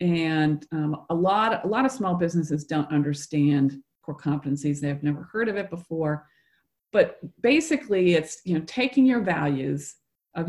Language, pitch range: English, 155-200 Hz